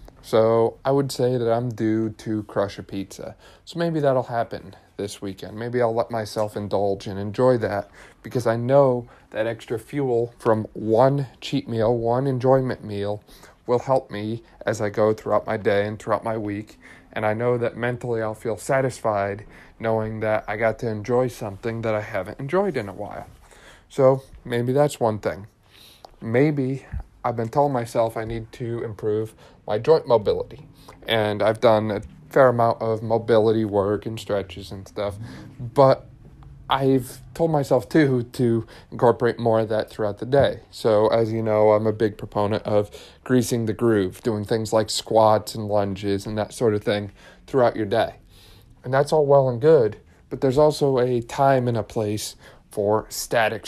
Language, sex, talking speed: English, male, 175 wpm